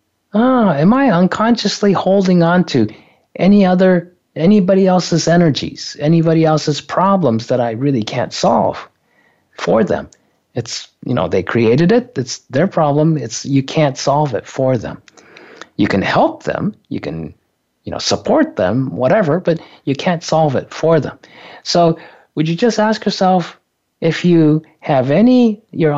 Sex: male